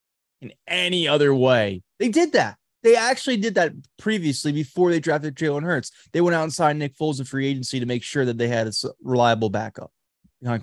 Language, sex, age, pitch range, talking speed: English, male, 20-39, 130-180 Hz, 210 wpm